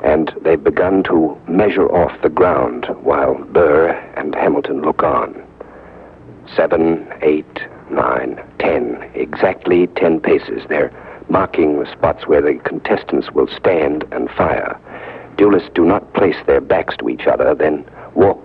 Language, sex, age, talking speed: English, male, 60-79, 140 wpm